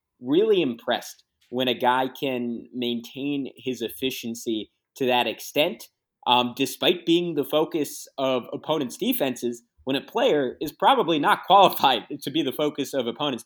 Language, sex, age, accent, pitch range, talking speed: English, male, 20-39, American, 120-150 Hz, 145 wpm